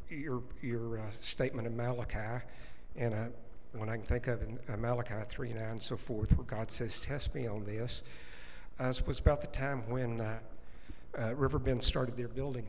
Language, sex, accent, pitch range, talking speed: English, male, American, 105-125 Hz, 180 wpm